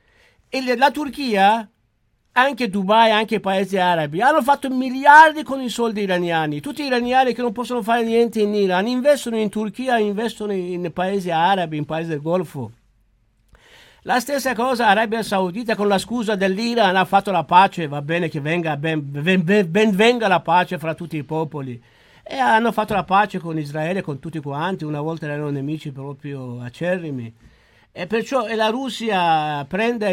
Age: 60-79